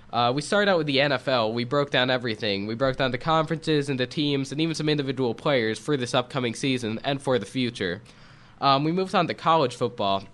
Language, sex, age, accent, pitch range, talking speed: English, male, 20-39, American, 115-150 Hz, 225 wpm